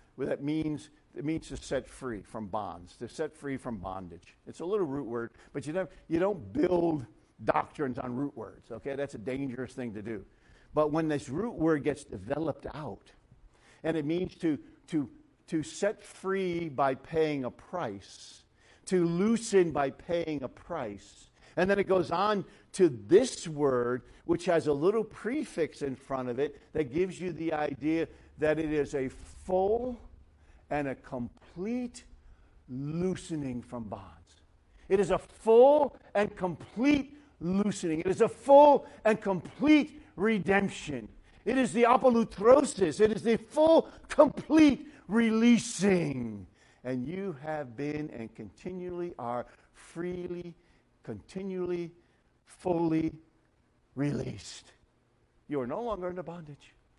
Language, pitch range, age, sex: English, 130-200 Hz, 50-69, male